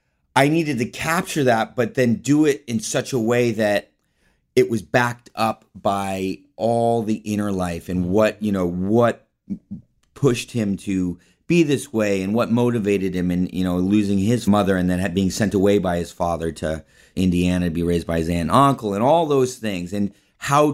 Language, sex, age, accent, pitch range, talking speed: English, male, 30-49, American, 90-120 Hz, 195 wpm